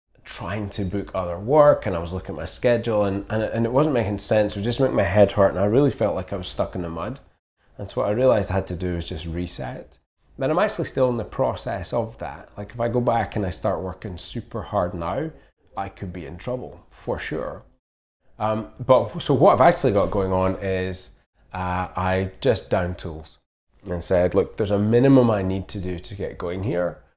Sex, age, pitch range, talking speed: male, 20-39, 90-110 Hz, 235 wpm